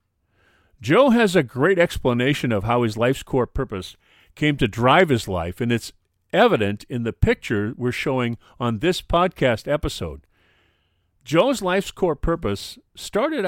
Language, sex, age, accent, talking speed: English, male, 40-59, American, 145 wpm